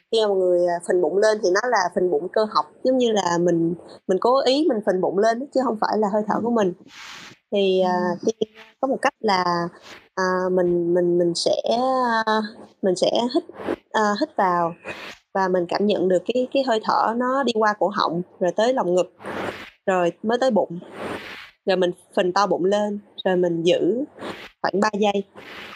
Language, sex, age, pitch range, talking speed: Vietnamese, female, 20-39, 180-220 Hz, 190 wpm